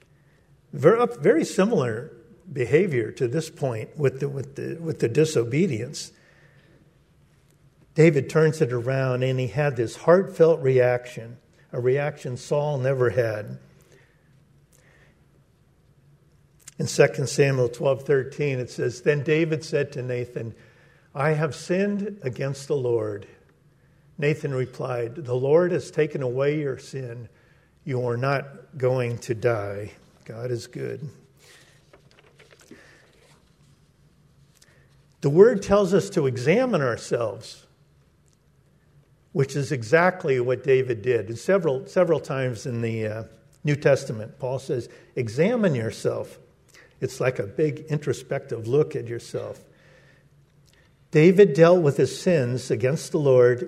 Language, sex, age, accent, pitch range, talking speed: English, male, 50-69, American, 125-155 Hz, 115 wpm